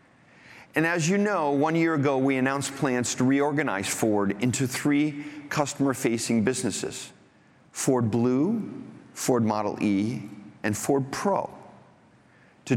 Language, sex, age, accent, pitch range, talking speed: English, male, 40-59, American, 125-155 Hz, 120 wpm